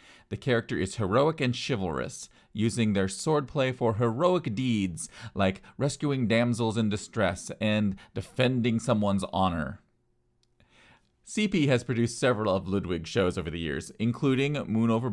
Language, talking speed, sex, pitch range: English, 135 wpm, male, 100-130 Hz